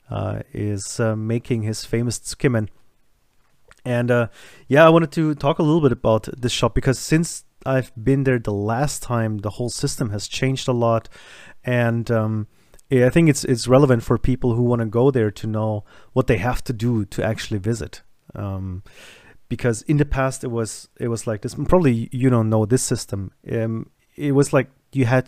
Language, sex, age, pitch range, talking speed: English, male, 30-49, 110-130 Hz, 195 wpm